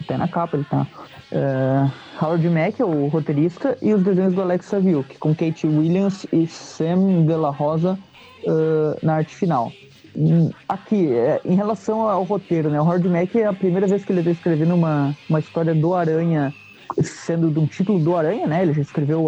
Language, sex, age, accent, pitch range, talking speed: Portuguese, male, 20-39, Brazilian, 150-180 Hz, 195 wpm